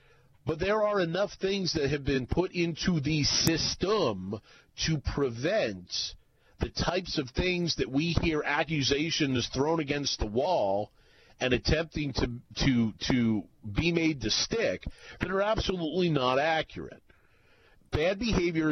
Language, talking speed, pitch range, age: English, 135 wpm, 130-170 Hz, 40-59